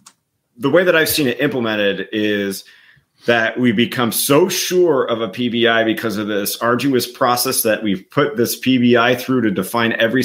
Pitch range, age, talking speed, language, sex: 110-145 Hz, 30-49, 175 wpm, English, male